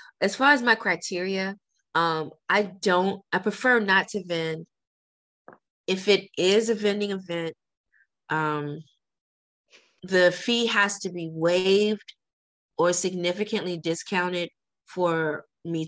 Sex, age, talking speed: female, 20-39, 115 wpm